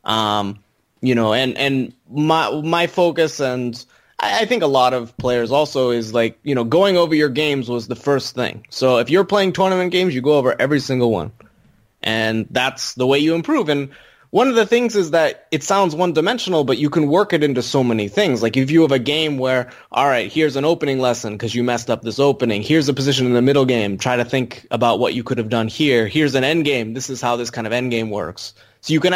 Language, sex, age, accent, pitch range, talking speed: English, male, 20-39, American, 120-155 Hz, 245 wpm